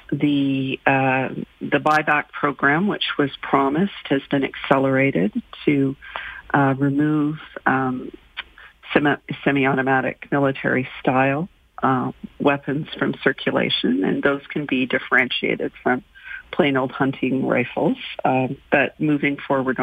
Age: 50-69